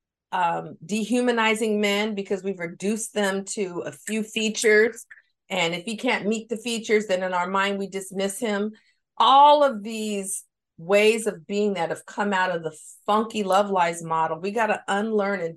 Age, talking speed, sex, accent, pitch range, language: 40-59, 175 wpm, female, American, 180-215 Hz, English